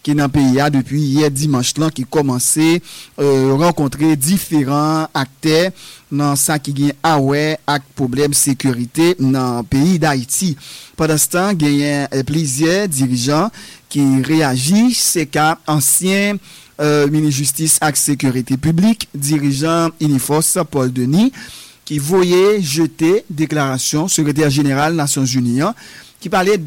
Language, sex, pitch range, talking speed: English, male, 140-170 Hz, 135 wpm